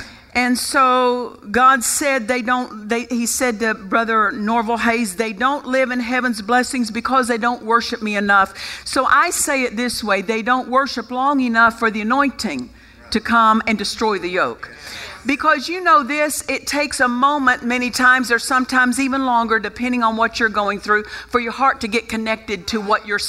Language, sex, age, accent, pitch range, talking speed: English, female, 50-69, American, 225-265 Hz, 190 wpm